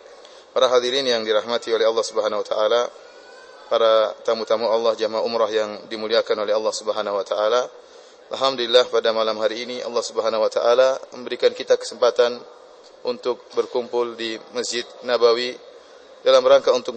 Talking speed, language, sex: 145 wpm, English, male